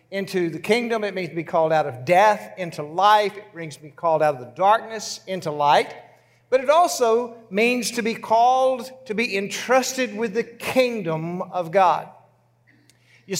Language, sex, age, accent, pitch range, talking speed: English, male, 50-69, American, 190-240 Hz, 180 wpm